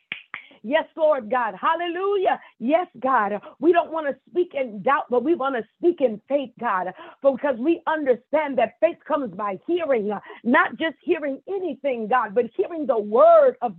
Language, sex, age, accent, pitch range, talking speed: English, female, 40-59, American, 255-335 Hz, 170 wpm